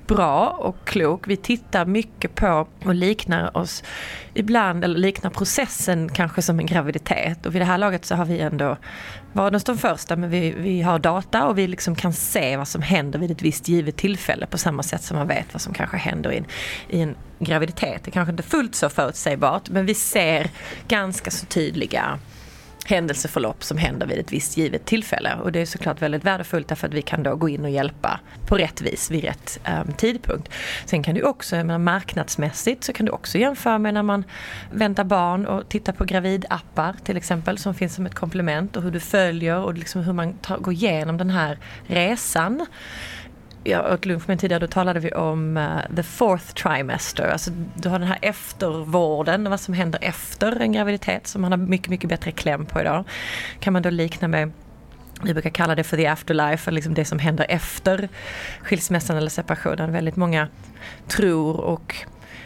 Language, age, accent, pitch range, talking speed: Swedish, 30-49, native, 160-195 Hz, 195 wpm